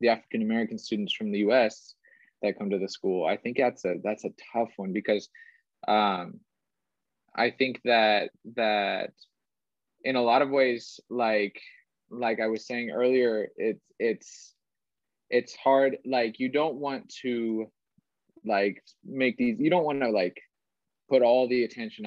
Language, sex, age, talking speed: English, male, 20-39, 150 wpm